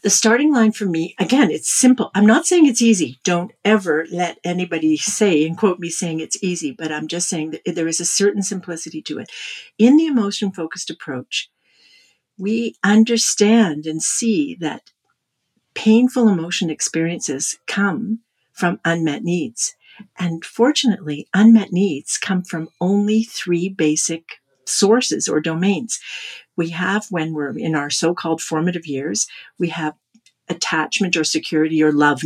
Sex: female